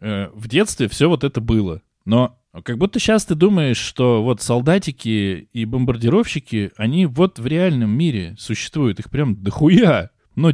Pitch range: 105-160 Hz